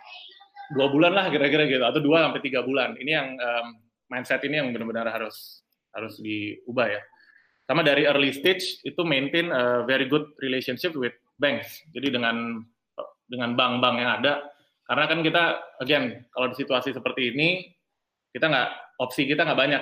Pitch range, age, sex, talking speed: 120-160 Hz, 20-39, male, 165 wpm